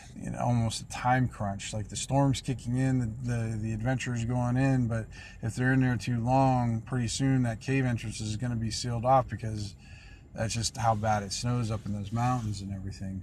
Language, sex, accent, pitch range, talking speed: English, male, American, 105-120 Hz, 220 wpm